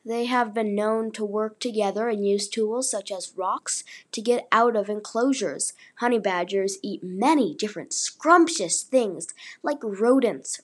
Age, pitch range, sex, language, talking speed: 20-39, 200-245 Hz, female, English, 150 wpm